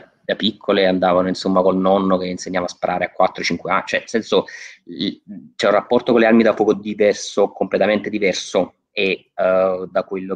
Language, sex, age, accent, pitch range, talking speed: Italian, male, 20-39, native, 95-125 Hz, 180 wpm